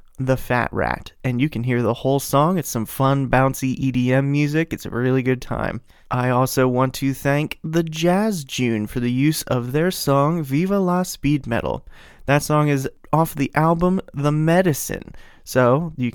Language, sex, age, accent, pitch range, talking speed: English, male, 20-39, American, 125-155 Hz, 180 wpm